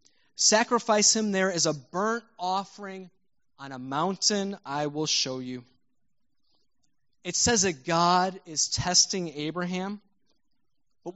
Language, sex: English, male